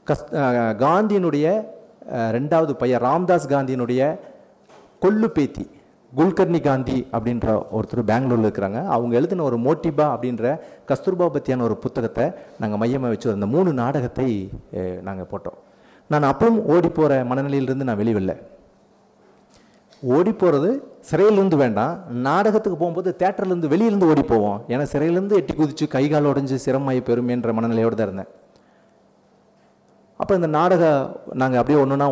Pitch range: 115-165 Hz